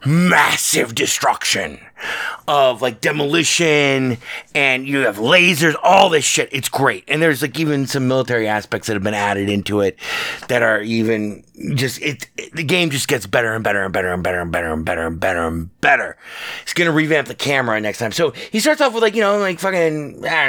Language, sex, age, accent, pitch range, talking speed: English, male, 30-49, American, 120-175 Hz, 200 wpm